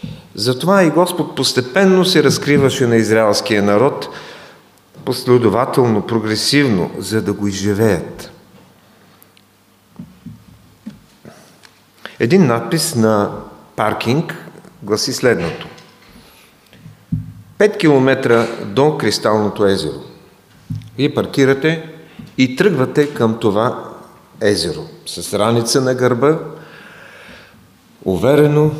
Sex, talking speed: male, 80 wpm